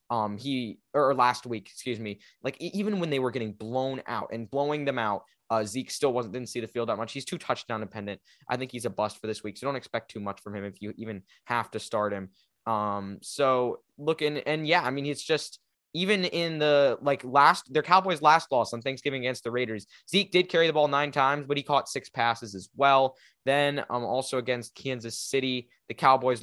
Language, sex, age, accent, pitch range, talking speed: English, male, 20-39, American, 115-145 Hz, 225 wpm